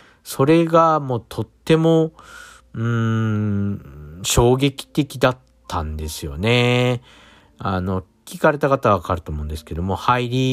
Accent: native